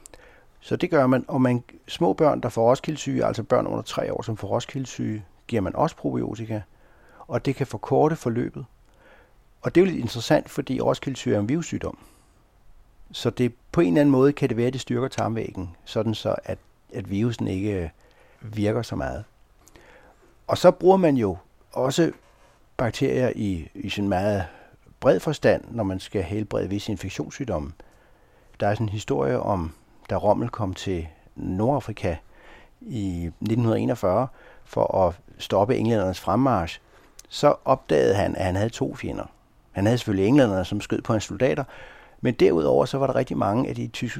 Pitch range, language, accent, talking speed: 105-135 Hz, Danish, native, 170 wpm